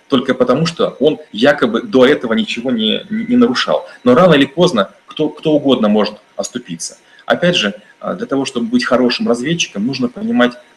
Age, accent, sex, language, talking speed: 30-49, native, male, Russian, 175 wpm